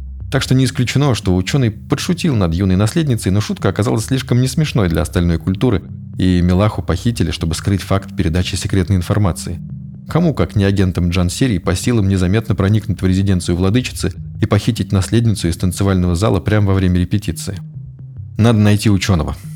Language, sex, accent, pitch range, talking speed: Russian, male, native, 90-120 Hz, 165 wpm